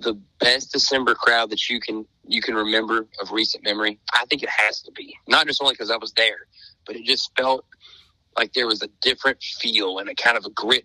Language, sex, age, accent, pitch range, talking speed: English, male, 30-49, American, 95-115 Hz, 230 wpm